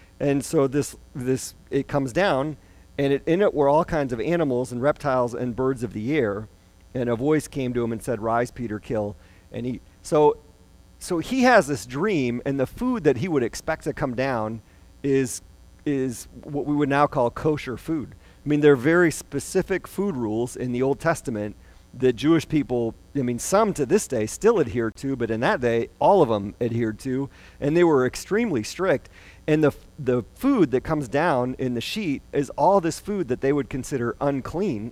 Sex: male